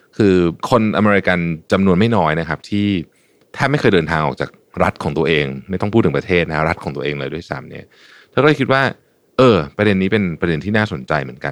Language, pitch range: Thai, 80-110 Hz